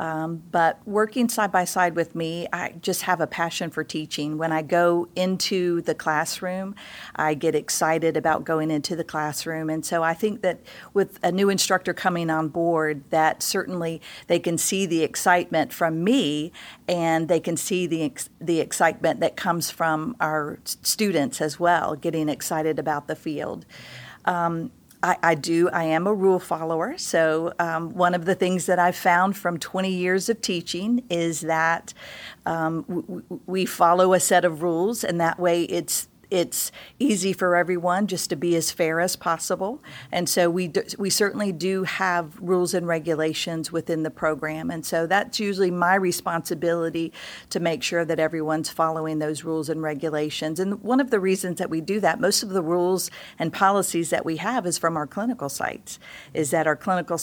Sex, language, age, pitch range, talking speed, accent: female, English, 50-69, 160-185 Hz, 180 wpm, American